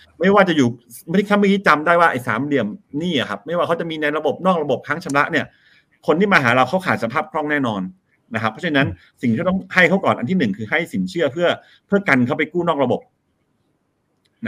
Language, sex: Thai, male